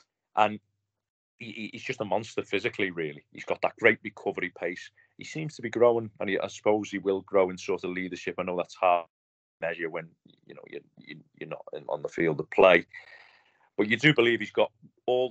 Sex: male